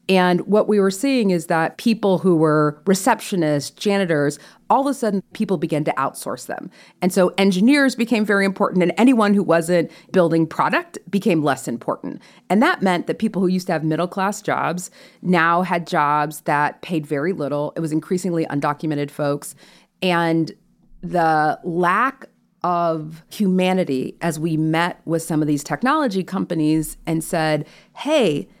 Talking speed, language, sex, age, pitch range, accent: 160 wpm, English, female, 40-59, 160-205 Hz, American